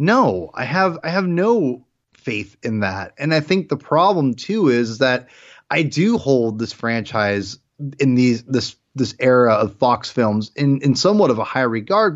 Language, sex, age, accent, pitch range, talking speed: English, male, 20-39, American, 125-175 Hz, 190 wpm